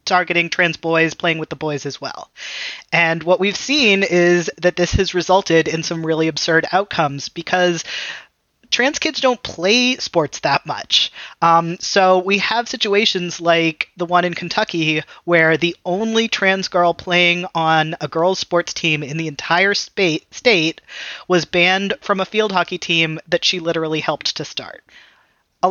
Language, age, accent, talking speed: English, 30-49, American, 165 wpm